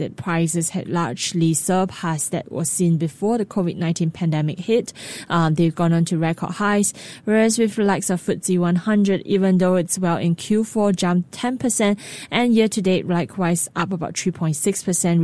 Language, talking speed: English, 160 wpm